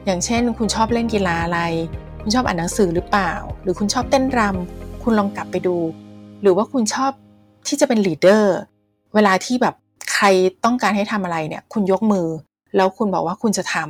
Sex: female